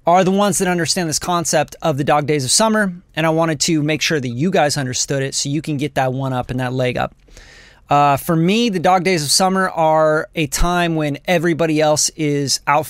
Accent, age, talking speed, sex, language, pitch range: American, 30-49, 235 wpm, male, English, 155-205 Hz